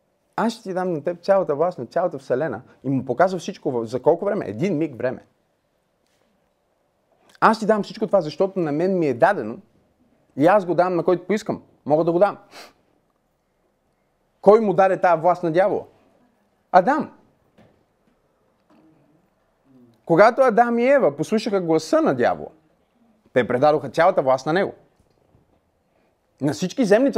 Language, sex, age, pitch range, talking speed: Bulgarian, male, 30-49, 150-210 Hz, 150 wpm